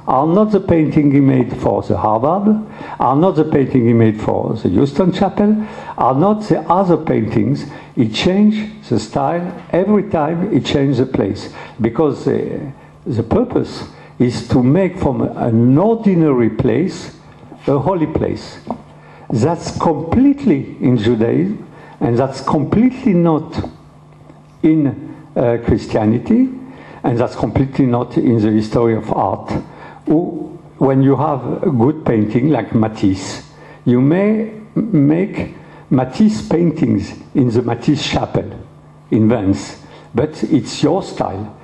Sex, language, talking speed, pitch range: male, Polish, 130 wpm, 120-165 Hz